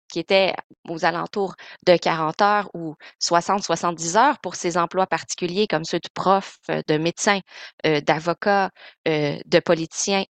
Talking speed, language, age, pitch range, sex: 145 wpm, French, 30-49, 165-200 Hz, female